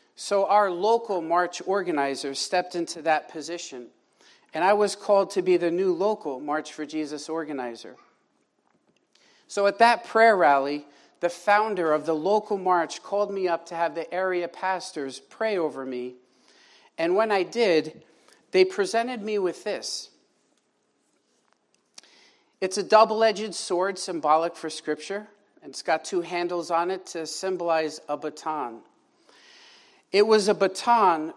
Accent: American